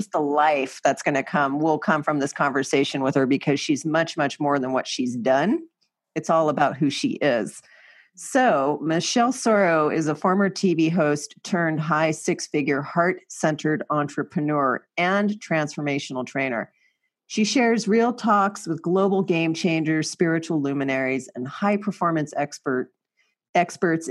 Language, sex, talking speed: English, female, 145 wpm